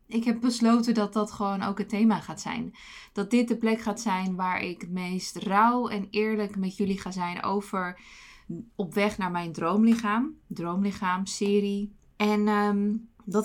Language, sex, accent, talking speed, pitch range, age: Dutch, female, Dutch, 170 wpm, 175-215 Hz, 20-39